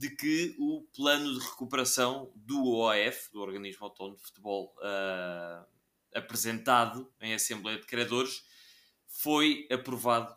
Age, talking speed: 20-39, 120 wpm